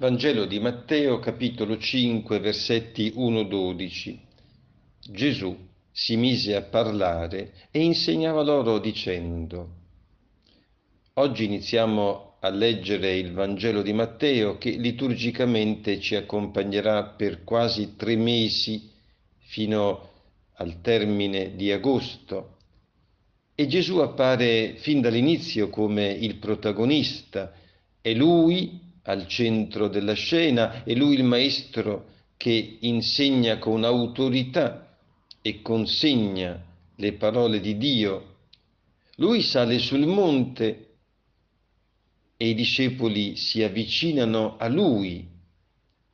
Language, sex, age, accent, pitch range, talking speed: Italian, male, 50-69, native, 100-125 Hz, 100 wpm